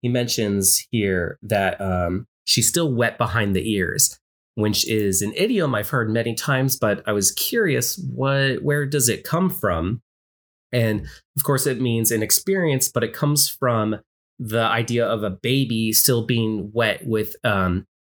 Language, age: English, 30-49